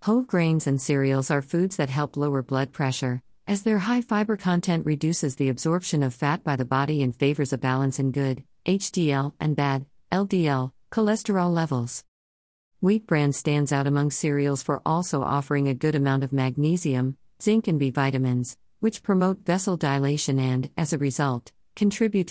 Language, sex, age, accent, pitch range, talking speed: English, female, 50-69, American, 130-165 Hz, 170 wpm